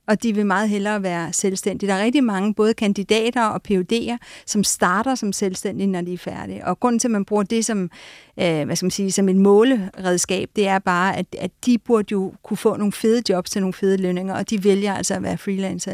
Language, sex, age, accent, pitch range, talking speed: Danish, female, 50-69, native, 185-225 Hz, 210 wpm